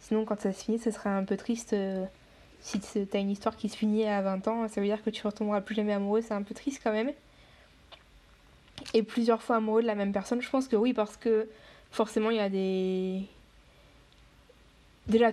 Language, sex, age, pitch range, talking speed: French, female, 20-39, 185-215 Hz, 215 wpm